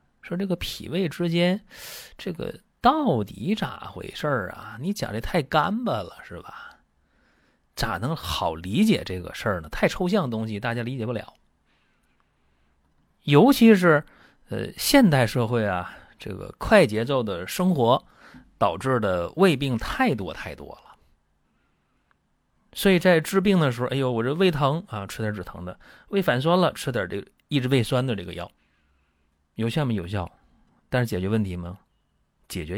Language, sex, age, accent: Chinese, male, 30-49, native